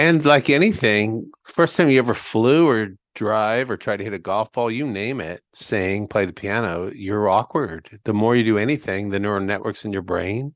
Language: English